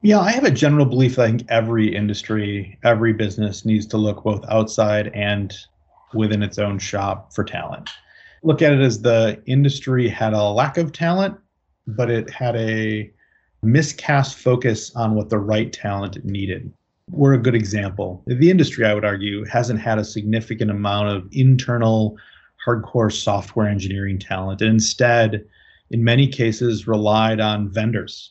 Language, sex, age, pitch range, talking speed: English, male, 30-49, 105-120 Hz, 160 wpm